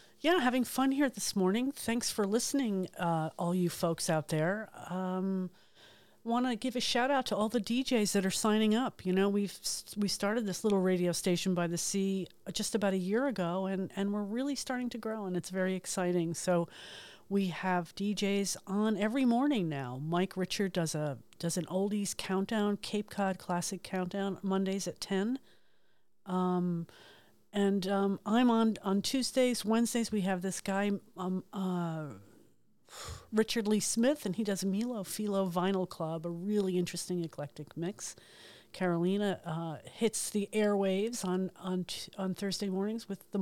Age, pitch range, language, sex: 50-69, 180-220 Hz, English, female